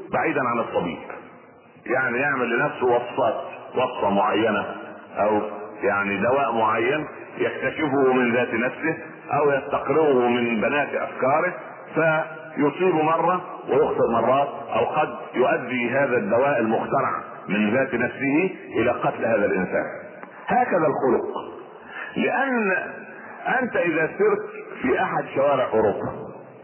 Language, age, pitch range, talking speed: Arabic, 40-59, 120-180 Hz, 110 wpm